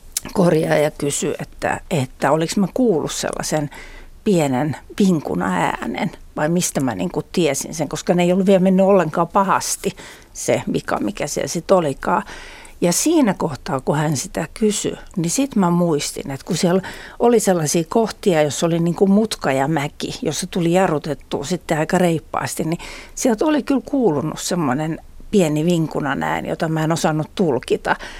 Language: Finnish